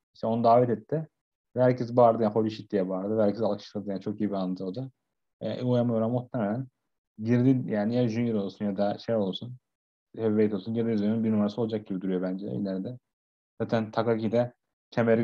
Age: 30-49